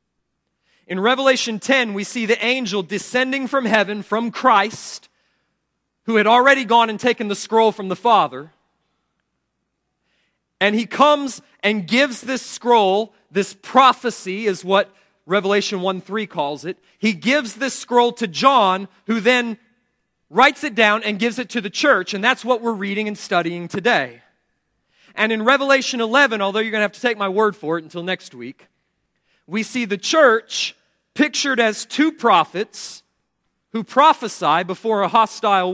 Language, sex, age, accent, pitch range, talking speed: English, male, 40-59, American, 200-260 Hz, 160 wpm